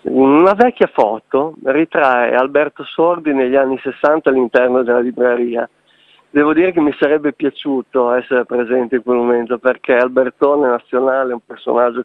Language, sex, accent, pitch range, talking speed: Italian, male, native, 125-165 Hz, 145 wpm